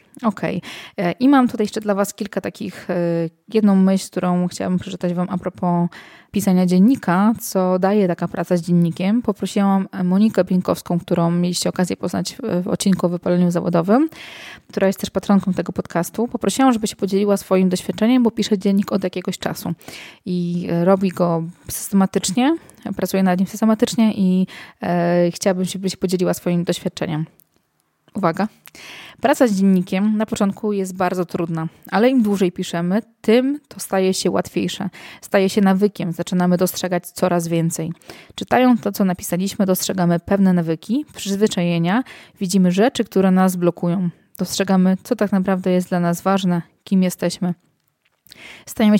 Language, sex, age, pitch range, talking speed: Polish, female, 20-39, 175-205 Hz, 150 wpm